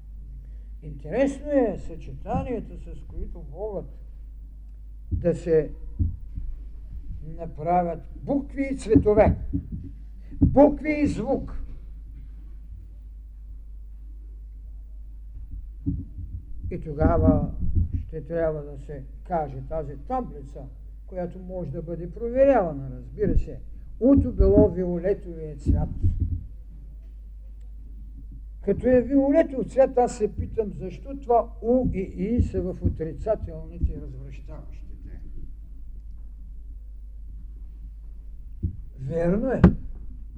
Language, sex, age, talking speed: Bulgarian, male, 60-79, 75 wpm